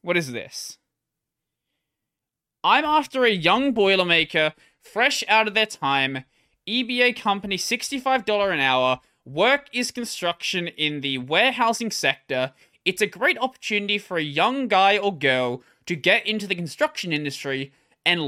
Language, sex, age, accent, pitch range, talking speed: English, male, 20-39, Australian, 150-220 Hz, 140 wpm